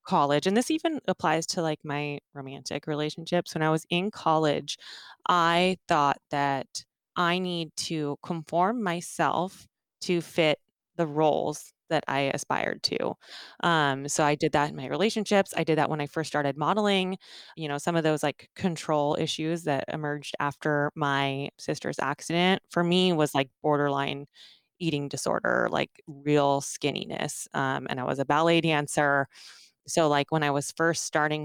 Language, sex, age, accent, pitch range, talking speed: English, female, 20-39, American, 145-175 Hz, 160 wpm